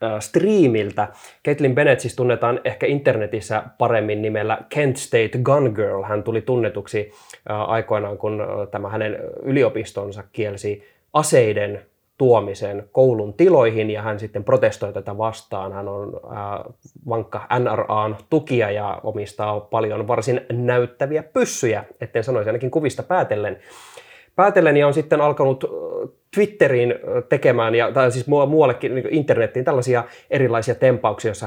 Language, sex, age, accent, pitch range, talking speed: Finnish, male, 20-39, native, 105-135 Hz, 120 wpm